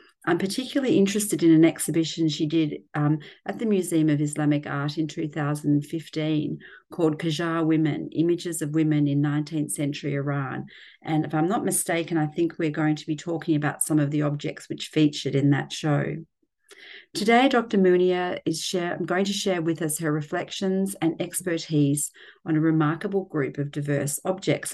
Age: 40-59